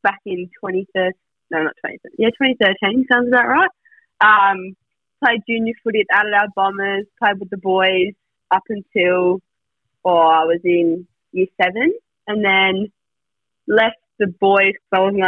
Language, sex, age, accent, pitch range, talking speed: English, female, 20-39, Australian, 175-205 Hz, 145 wpm